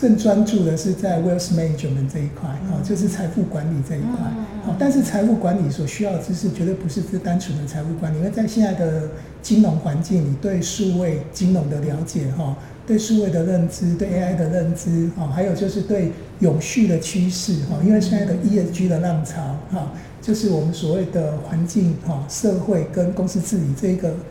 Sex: male